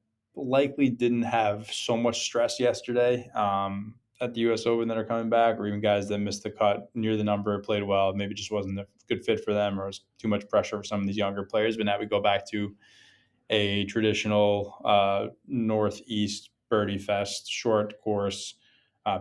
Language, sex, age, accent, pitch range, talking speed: English, male, 20-39, American, 100-110 Hz, 195 wpm